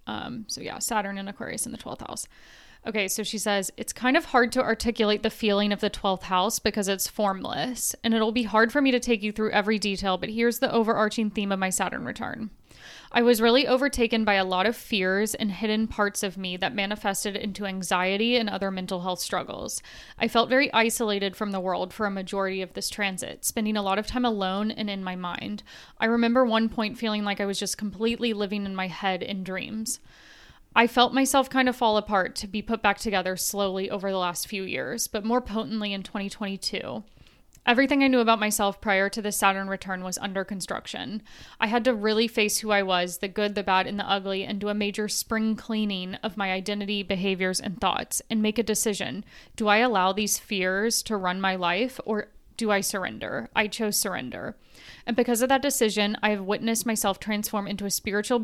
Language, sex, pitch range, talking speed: English, female, 195-225 Hz, 215 wpm